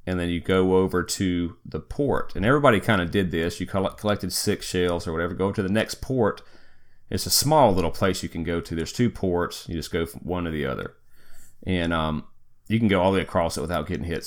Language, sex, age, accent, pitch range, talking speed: English, male, 30-49, American, 85-110 Hz, 250 wpm